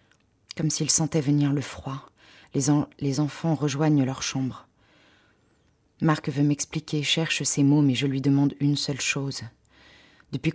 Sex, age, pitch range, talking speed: female, 20-39, 130-150 Hz, 150 wpm